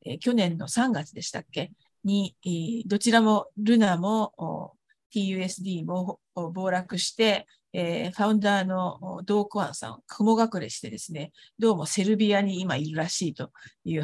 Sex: female